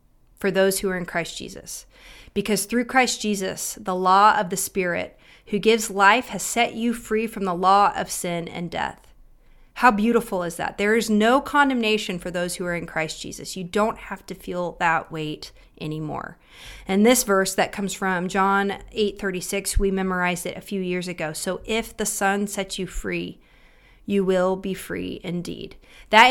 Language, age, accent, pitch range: English, 30-49, American, 185-225 Hz